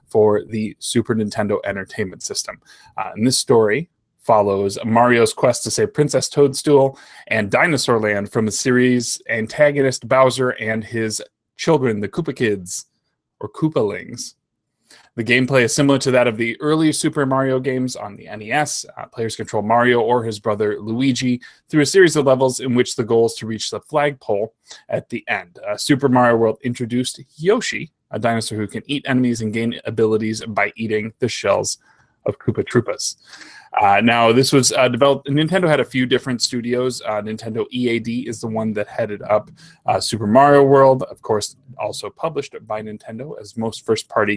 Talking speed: 175 wpm